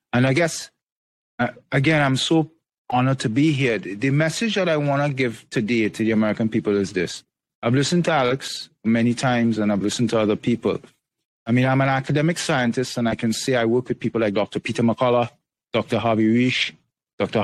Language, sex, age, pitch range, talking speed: English, male, 30-49, 115-145 Hz, 200 wpm